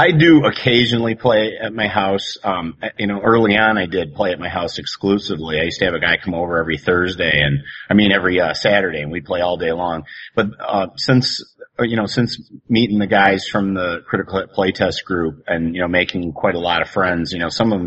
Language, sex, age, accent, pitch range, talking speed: English, male, 40-59, American, 80-100 Hz, 230 wpm